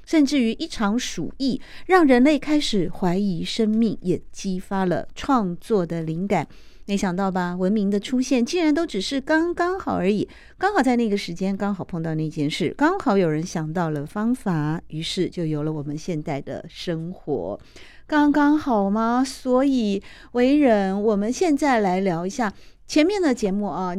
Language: Chinese